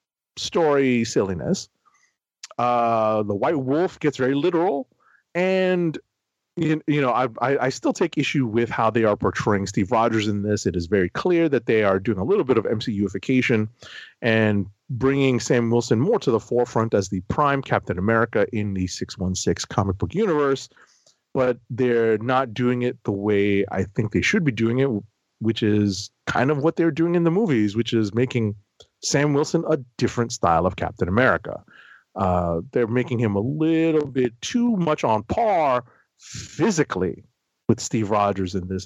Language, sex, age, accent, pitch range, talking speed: English, male, 30-49, American, 105-135 Hz, 170 wpm